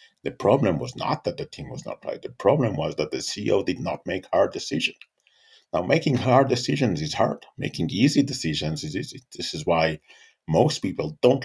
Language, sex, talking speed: English, male, 200 wpm